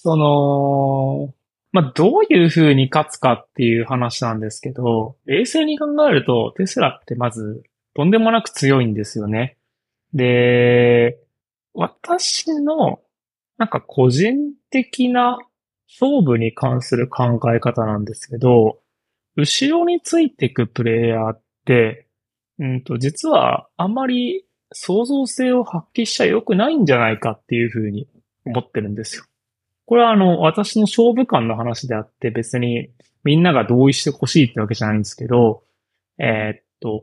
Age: 20-39